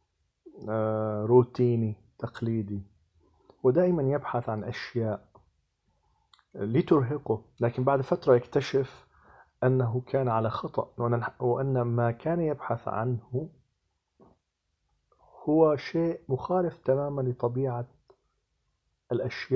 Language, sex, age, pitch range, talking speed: Arabic, male, 40-59, 110-135 Hz, 80 wpm